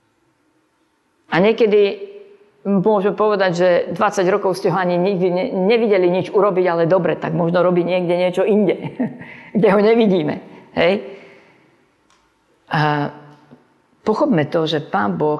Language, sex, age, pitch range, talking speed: Slovak, female, 50-69, 155-190 Hz, 125 wpm